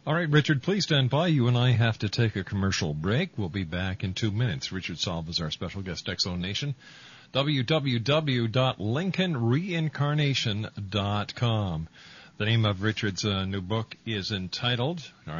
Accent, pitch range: American, 100-140 Hz